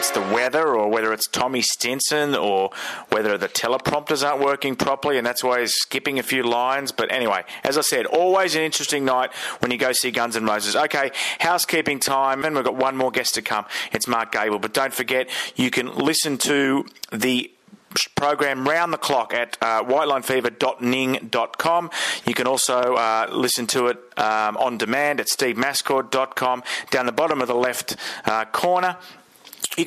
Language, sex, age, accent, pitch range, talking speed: English, male, 30-49, Australian, 115-150 Hz, 175 wpm